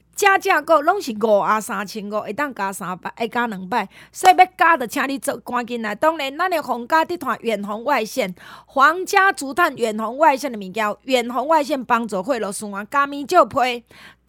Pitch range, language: 215-290 Hz, Chinese